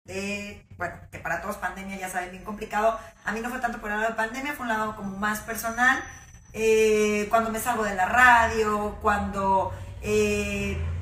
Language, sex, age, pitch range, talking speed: Spanish, female, 30-49, 190-235 Hz, 190 wpm